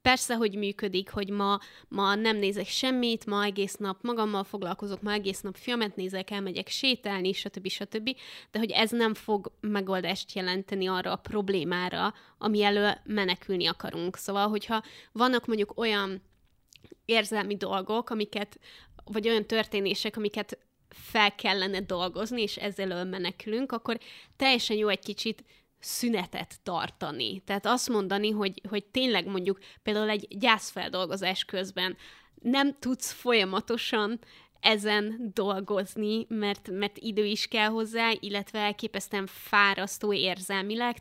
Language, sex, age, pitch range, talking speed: Hungarian, female, 20-39, 195-225 Hz, 125 wpm